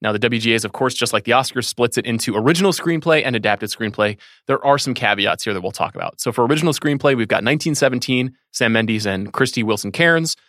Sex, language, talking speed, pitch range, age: male, English, 225 wpm, 110-140 Hz, 30-49